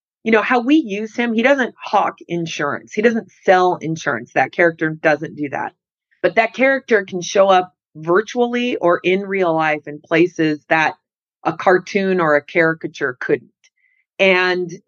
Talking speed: 160 wpm